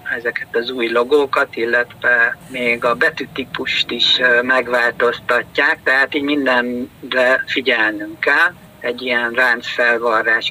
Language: Hungarian